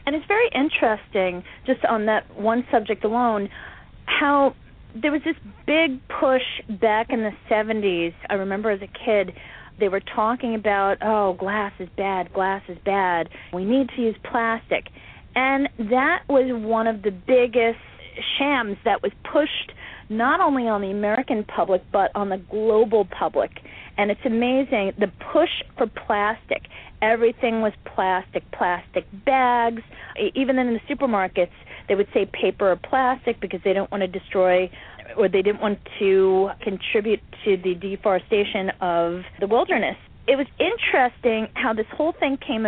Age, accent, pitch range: 40-59, American, 200-255 Hz